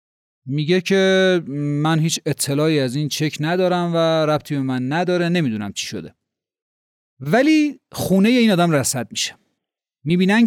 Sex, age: male, 30-49